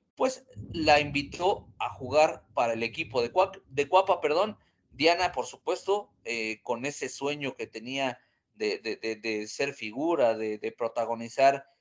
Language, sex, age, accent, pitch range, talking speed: Spanish, male, 40-59, Mexican, 125-185 Hz, 160 wpm